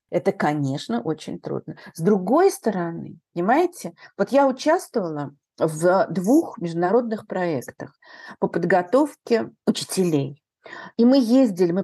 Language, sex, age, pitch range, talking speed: Russian, female, 50-69, 180-265 Hz, 110 wpm